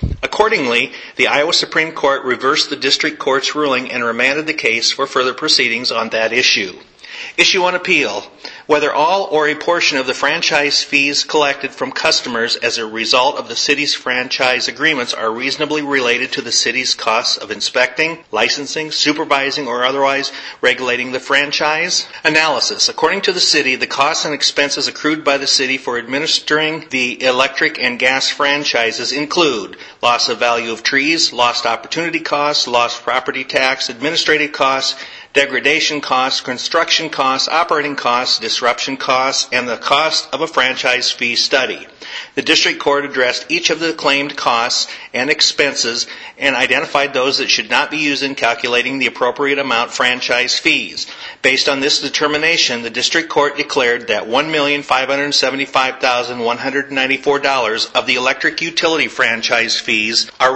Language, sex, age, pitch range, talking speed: English, male, 40-59, 125-150 Hz, 150 wpm